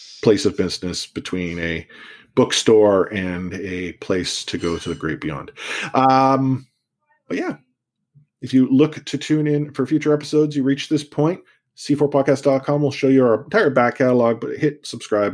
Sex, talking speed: male, 165 wpm